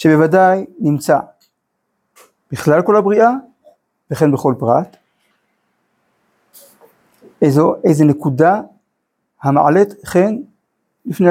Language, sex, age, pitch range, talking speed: Hebrew, male, 50-69, 145-185 Hz, 75 wpm